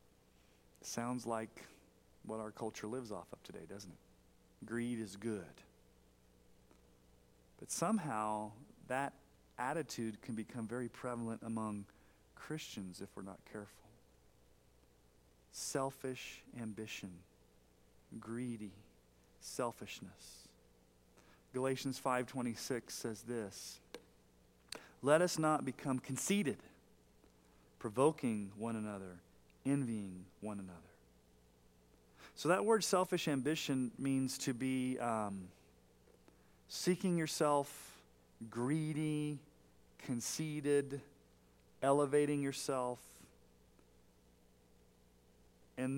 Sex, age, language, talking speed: male, 40-59, English, 80 wpm